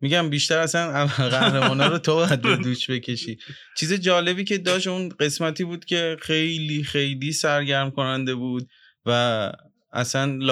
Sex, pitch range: male, 125-155 Hz